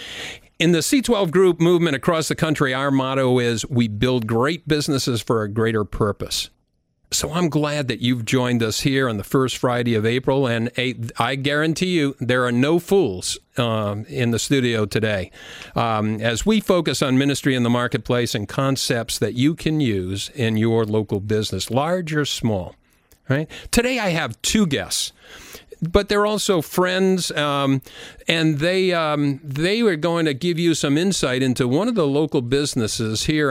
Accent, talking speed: American, 170 wpm